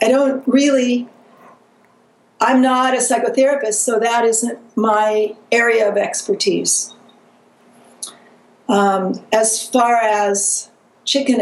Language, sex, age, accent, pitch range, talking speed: English, female, 60-79, American, 205-240 Hz, 100 wpm